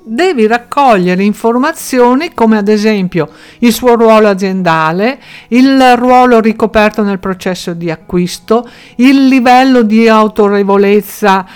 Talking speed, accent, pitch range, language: 110 wpm, native, 180-230 Hz, Italian